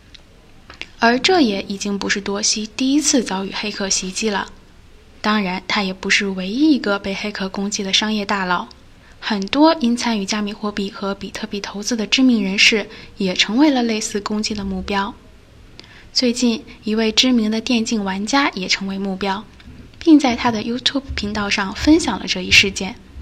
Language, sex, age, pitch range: Chinese, female, 10-29, 200-245 Hz